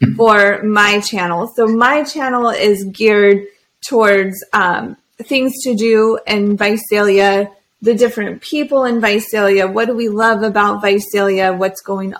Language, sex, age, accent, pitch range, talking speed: English, female, 20-39, American, 195-225 Hz, 140 wpm